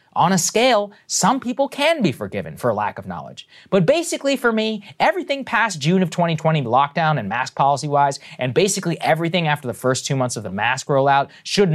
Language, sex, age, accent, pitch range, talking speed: English, male, 20-39, American, 130-185 Hz, 195 wpm